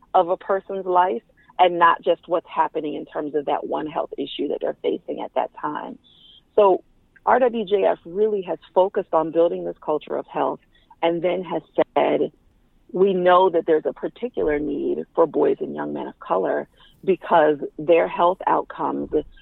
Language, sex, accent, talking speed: English, female, American, 170 wpm